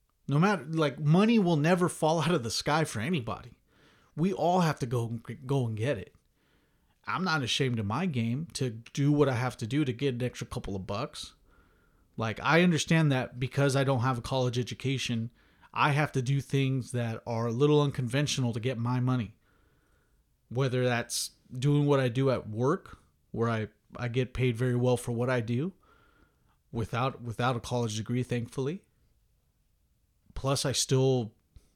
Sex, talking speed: male, 180 wpm